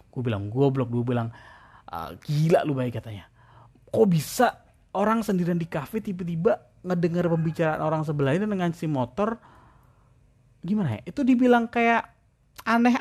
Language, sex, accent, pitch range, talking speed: Indonesian, male, native, 120-170 Hz, 145 wpm